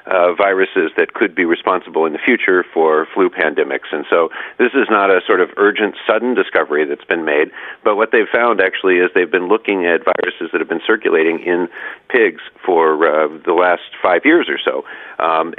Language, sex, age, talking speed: English, male, 50-69, 200 wpm